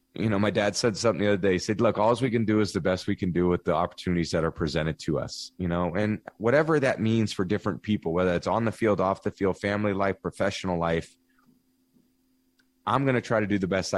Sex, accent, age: male, American, 30-49